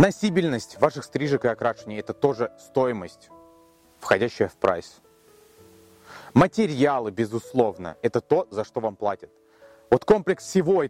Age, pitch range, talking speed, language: 30-49, 125-180 Hz, 125 wpm, Russian